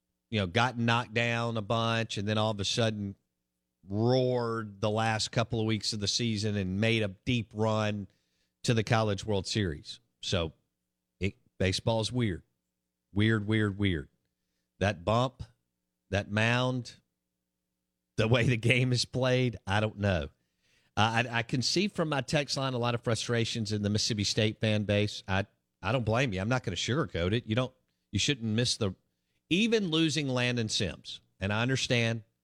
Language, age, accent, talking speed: English, 50-69, American, 175 wpm